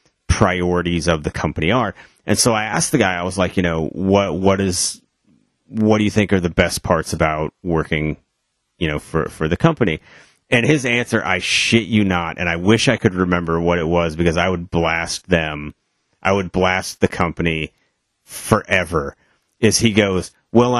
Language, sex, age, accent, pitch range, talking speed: English, male, 30-49, American, 85-110 Hz, 190 wpm